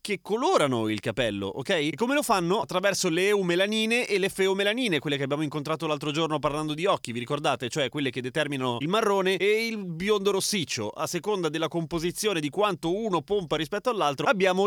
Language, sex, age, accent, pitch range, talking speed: Italian, male, 30-49, native, 135-195 Hz, 190 wpm